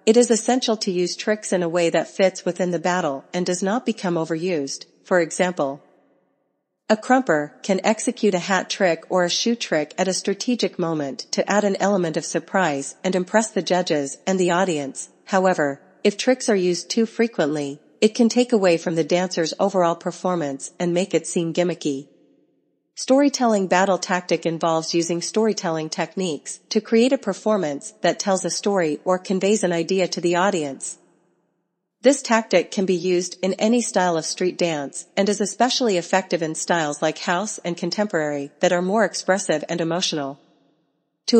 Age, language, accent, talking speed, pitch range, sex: 40-59, English, American, 175 wpm, 170-205 Hz, female